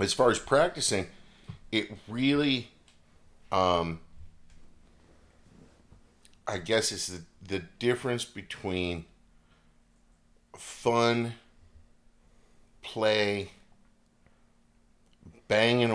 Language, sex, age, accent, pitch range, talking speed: English, male, 50-69, American, 80-100 Hz, 65 wpm